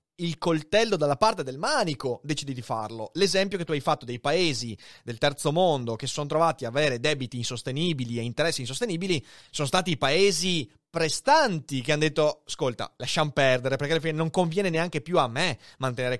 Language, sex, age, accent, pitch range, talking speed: Italian, male, 30-49, native, 130-185 Hz, 180 wpm